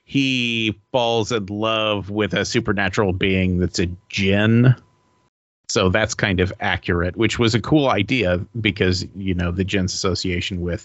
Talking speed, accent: 155 wpm, American